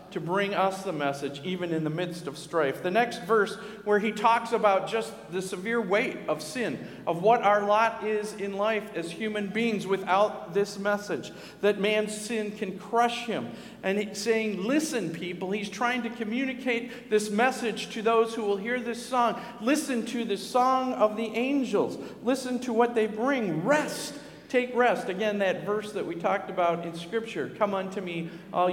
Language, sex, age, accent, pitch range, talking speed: English, male, 50-69, American, 180-220 Hz, 185 wpm